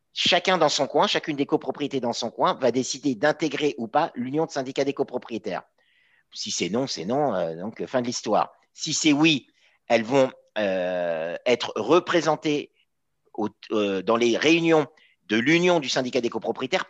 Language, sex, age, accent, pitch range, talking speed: French, male, 50-69, French, 120-155 Hz, 170 wpm